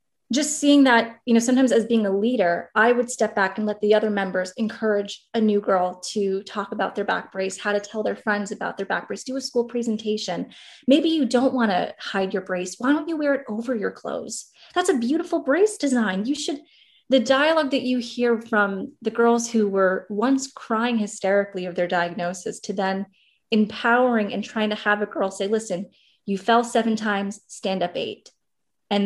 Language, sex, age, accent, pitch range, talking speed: English, female, 20-39, American, 195-230 Hz, 205 wpm